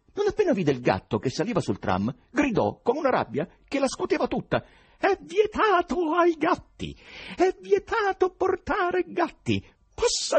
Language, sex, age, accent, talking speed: Italian, male, 50-69, native, 155 wpm